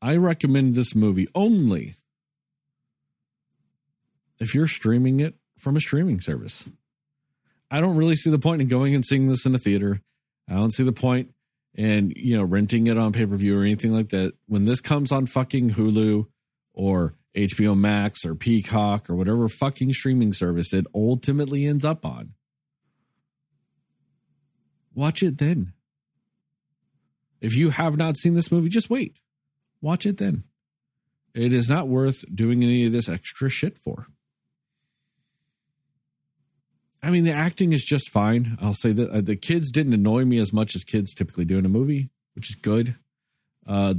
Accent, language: American, English